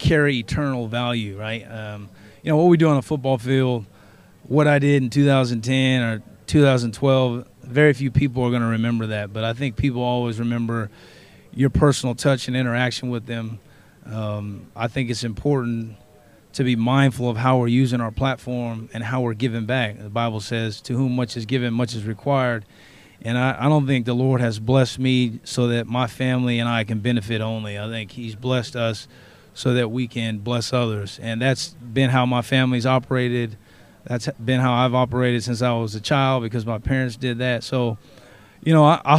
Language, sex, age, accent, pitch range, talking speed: English, male, 30-49, American, 115-130 Hz, 200 wpm